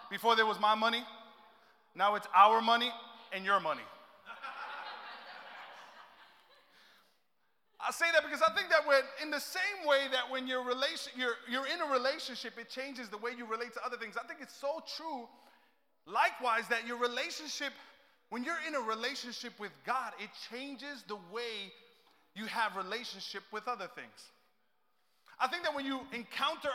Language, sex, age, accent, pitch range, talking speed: English, male, 30-49, American, 230-275 Hz, 165 wpm